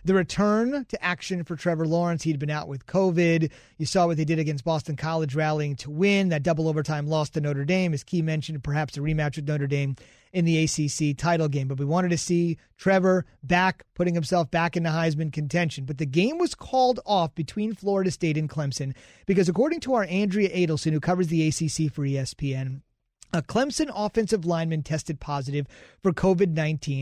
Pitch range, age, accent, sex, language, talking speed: 155-185 Hz, 30-49, American, male, English, 200 wpm